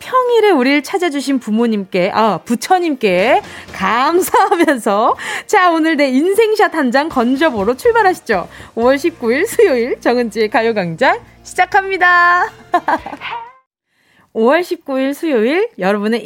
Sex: female